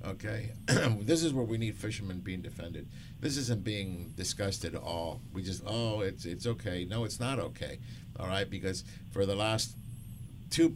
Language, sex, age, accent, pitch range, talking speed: English, male, 50-69, American, 105-125 Hz, 180 wpm